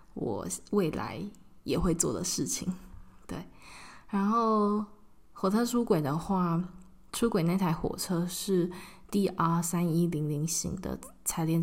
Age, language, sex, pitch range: 20-39, Chinese, female, 175-200 Hz